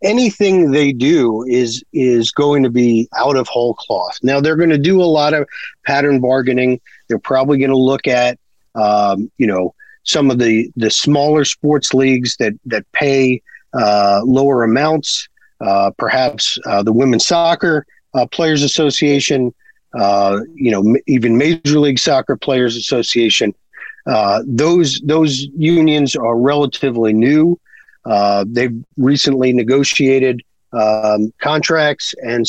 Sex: male